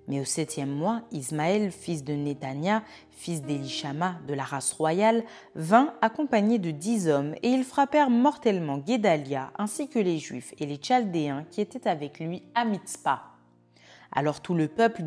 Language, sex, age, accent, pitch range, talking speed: French, female, 30-49, French, 155-230 Hz, 165 wpm